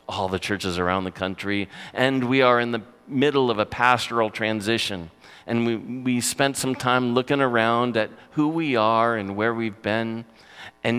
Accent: American